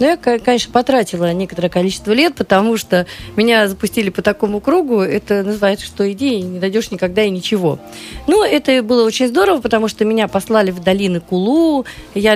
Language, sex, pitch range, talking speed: Russian, female, 180-235 Hz, 180 wpm